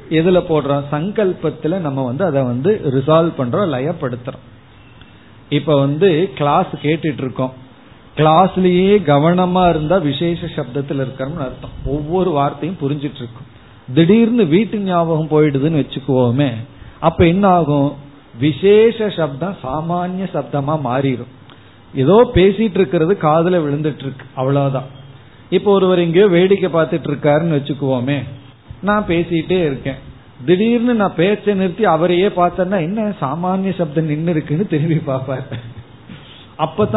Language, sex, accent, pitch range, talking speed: Tamil, male, native, 135-180 Hz, 110 wpm